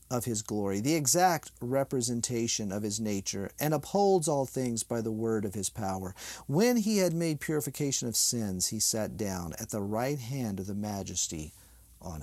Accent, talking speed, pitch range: American, 180 wpm, 100-135 Hz